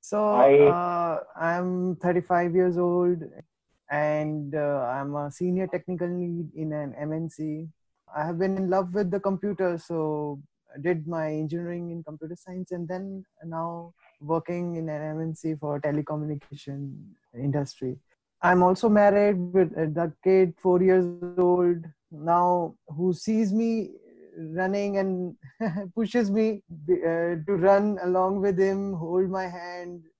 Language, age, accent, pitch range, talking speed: Hindi, 20-39, native, 160-195 Hz, 145 wpm